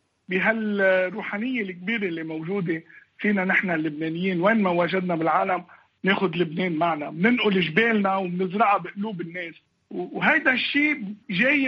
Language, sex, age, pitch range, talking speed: Arabic, male, 50-69, 180-235 Hz, 115 wpm